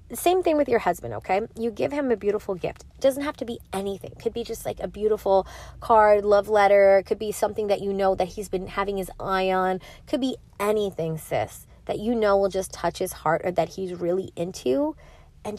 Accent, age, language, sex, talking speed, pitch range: American, 20-39, English, female, 235 wpm, 180-230 Hz